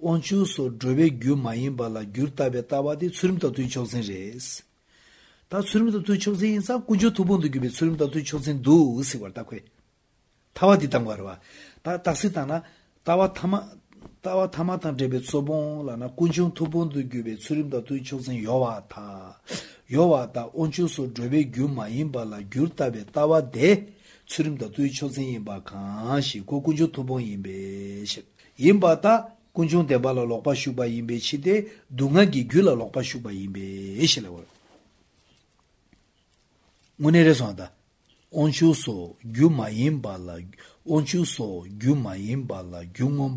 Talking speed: 65 wpm